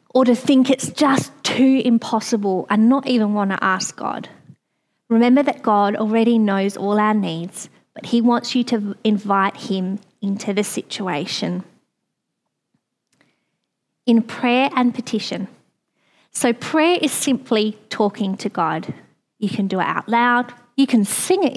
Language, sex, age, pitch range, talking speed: English, female, 20-39, 205-245 Hz, 145 wpm